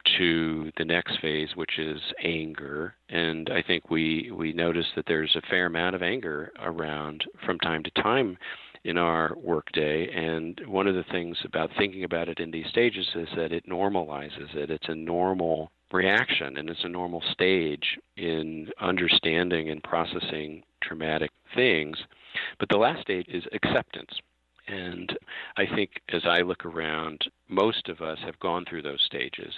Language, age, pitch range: English, 40-59, 80-85 Hz